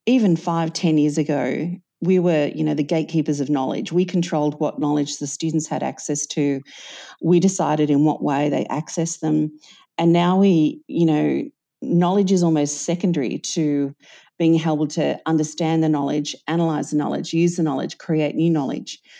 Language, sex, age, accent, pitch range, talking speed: English, female, 40-59, Australian, 150-175 Hz, 170 wpm